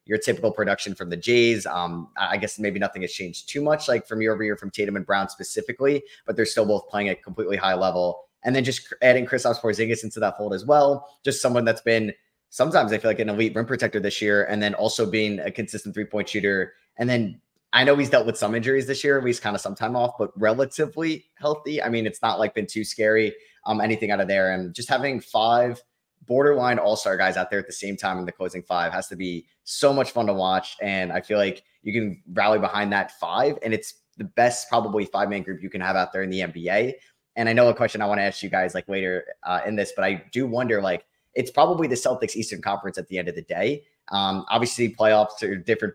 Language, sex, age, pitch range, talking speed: English, male, 20-39, 100-120 Hz, 245 wpm